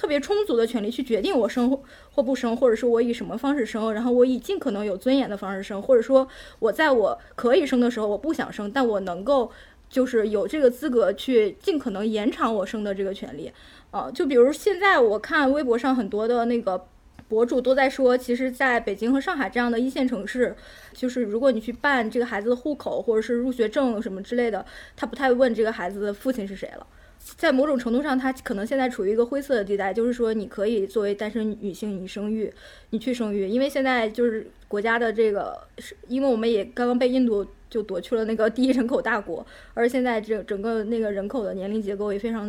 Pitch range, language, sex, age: 215-260 Hz, Chinese, female, 20-39